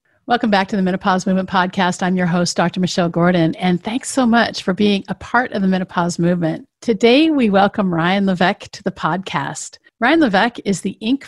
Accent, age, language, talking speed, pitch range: American, 50-69, English, 200 wpm, 180-225 Hz